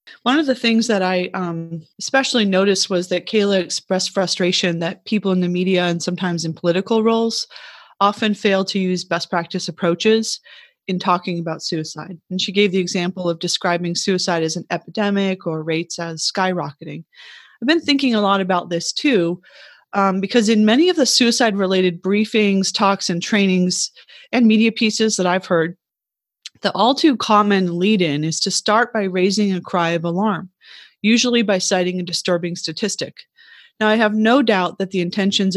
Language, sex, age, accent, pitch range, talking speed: English, female, 30-49, American, 175-220 Hz, 170 wpm